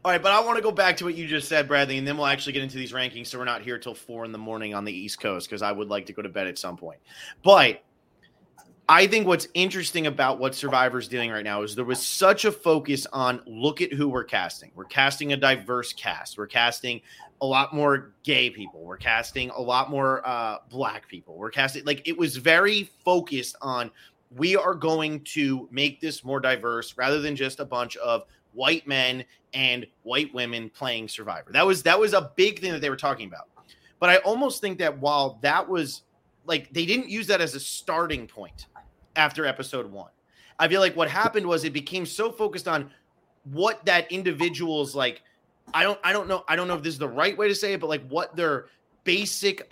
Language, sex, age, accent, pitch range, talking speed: English, male, 30-49, American, 125-180 Hz, 225 wpm